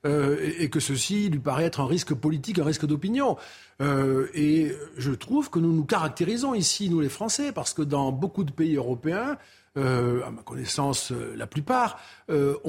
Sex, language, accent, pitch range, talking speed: male, French, French, 145-200 Hz, 195 wpm